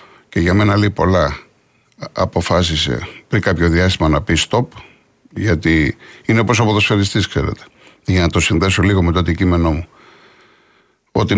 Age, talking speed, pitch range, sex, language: 50-69, 140 wpm, 85-110 Hz, male, Greek